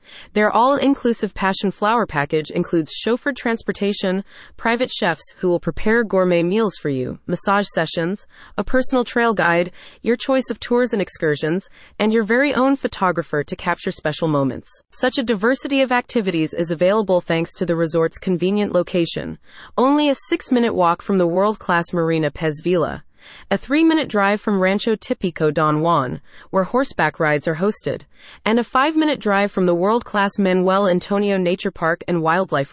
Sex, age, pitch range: female, 30-49, 170-235 Hz